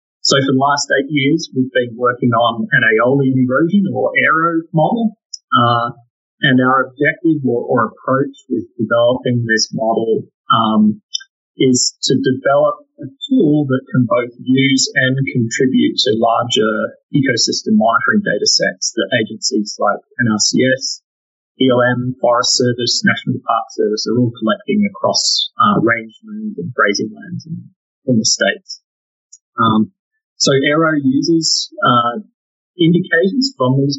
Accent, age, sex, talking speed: Australian, 30-49, male, 135 wpm